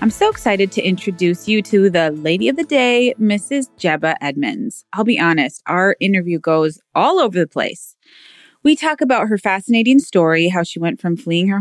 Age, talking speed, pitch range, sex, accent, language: 20-39, 190 wpm, 175-250 Hz, female, American, English